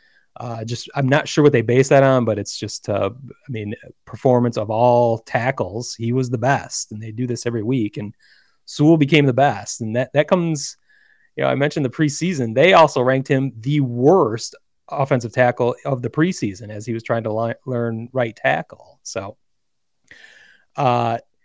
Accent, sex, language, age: American, male, English, 30-49